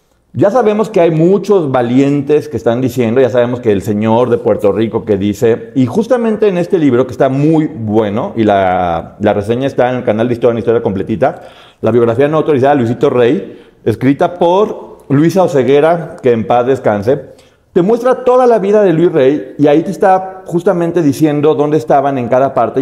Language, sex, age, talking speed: Spanish, male, 40-59, 195 wpm